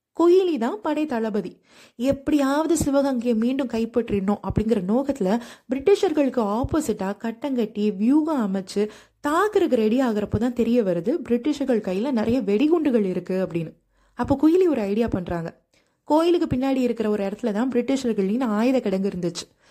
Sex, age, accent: female, 20-39, native